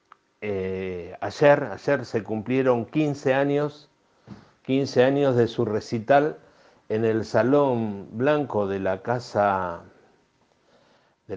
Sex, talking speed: male, 85 wpm